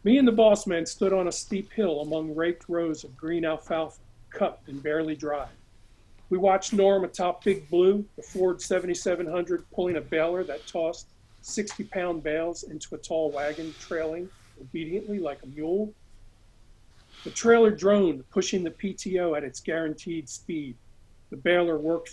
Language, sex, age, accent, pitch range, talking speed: English, male, 50-69, American, 145-180 Hz, 155 wpm